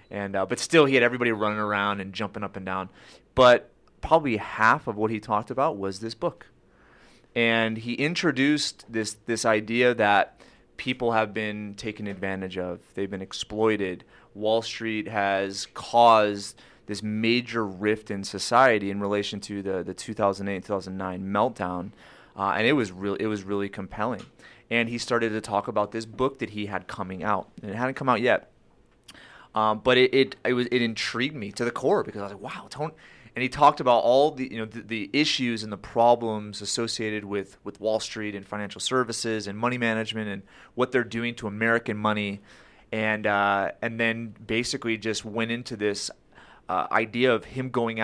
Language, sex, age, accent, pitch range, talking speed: English, male, 30-49, American, 100-120 Hz, 190 wpm